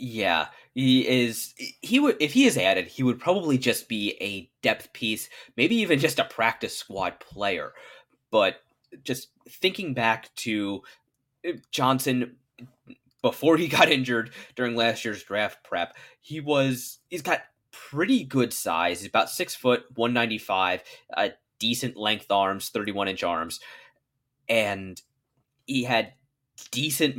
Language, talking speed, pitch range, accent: English, 135 wpm, 110-135 Hz, American